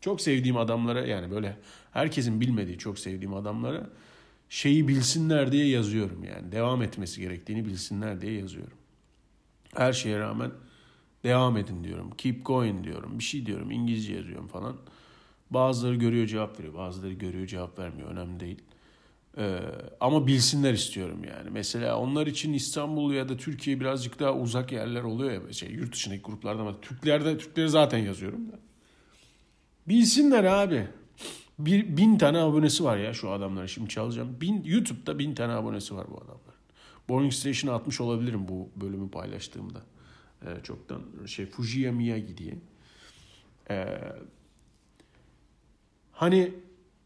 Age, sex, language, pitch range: 40-59, male, Turkish, 100-145 Hz